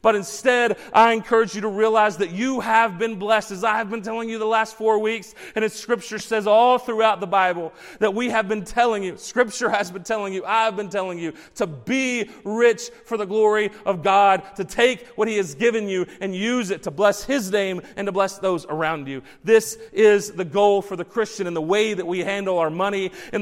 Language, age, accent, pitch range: English, 30-49, American, 190-225 Hz